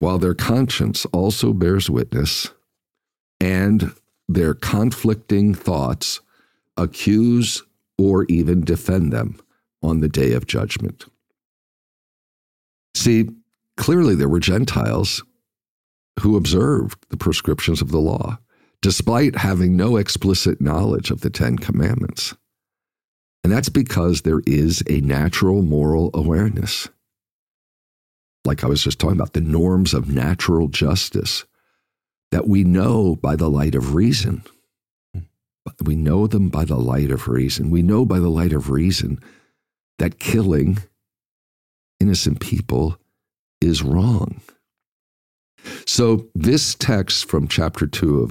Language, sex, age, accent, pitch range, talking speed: English, male, 50-69, American, 75-105 Hz, 120 wpm